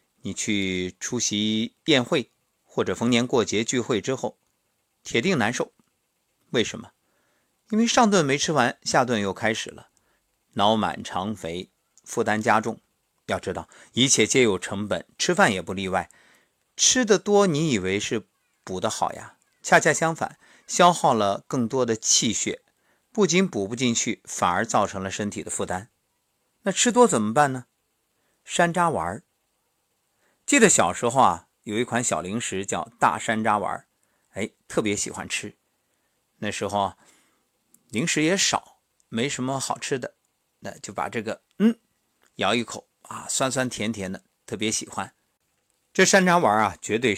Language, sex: Chinese, male